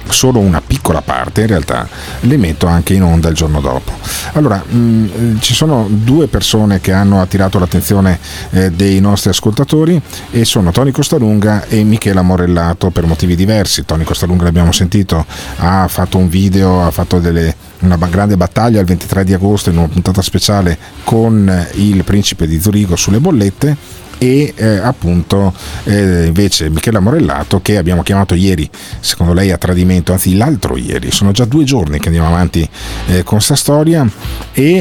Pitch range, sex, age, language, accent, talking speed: 90-110 Hz, male, 40-59, Italian, native, 165 wpm